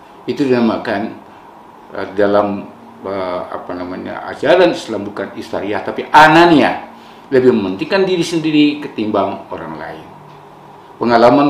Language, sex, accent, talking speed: Indonesian, male, native, 110 wpm